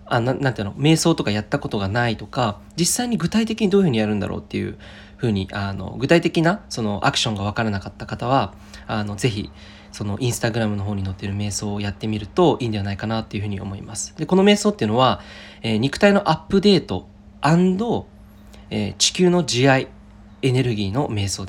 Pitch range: 100-160 Hz